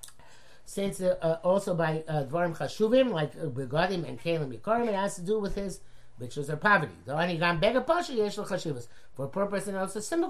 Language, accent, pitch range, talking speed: English, American, 150-210 Hz, 190 wpm